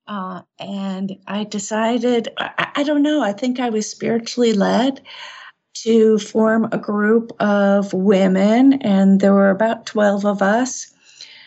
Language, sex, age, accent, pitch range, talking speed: English, female, 50-69, American, 185-220 Hz, 140 wpm